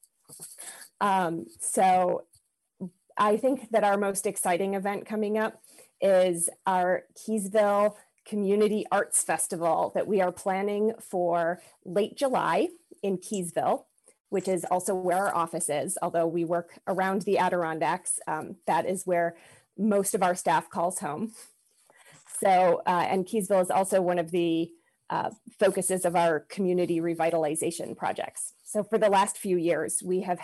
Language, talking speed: English, 145 wpm